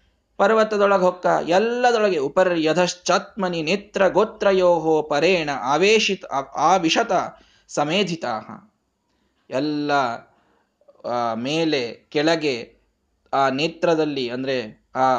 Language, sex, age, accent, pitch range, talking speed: Kannada, male, 20-39, native, 140-185 Hz, 65 wpm